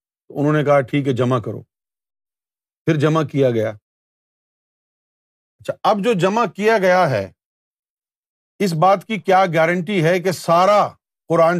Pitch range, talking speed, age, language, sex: 130-185 Hz, 140 wpm, 50-69, Urdu, male